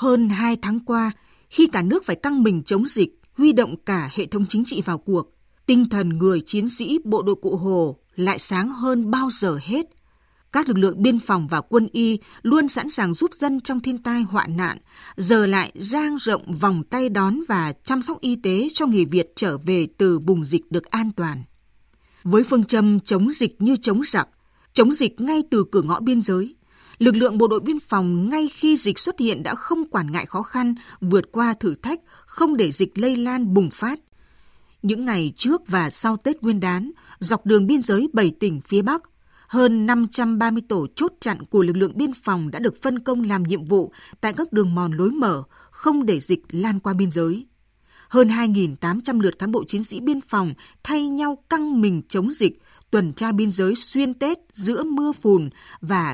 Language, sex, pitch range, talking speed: Vietnamese, female, 190-255 Hz, 205 wpm